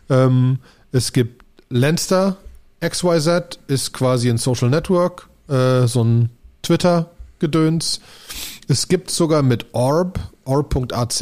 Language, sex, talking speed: German, male, 105 wpm